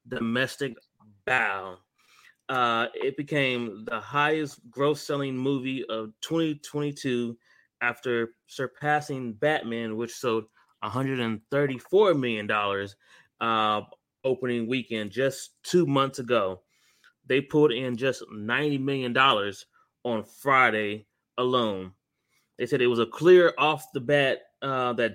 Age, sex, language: 20-39, male, English